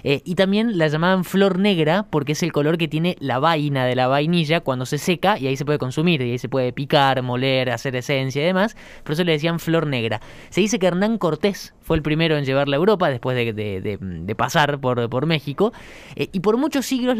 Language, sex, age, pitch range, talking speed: Spanish, male, 20-39, 140-205 Hz, 230 wpm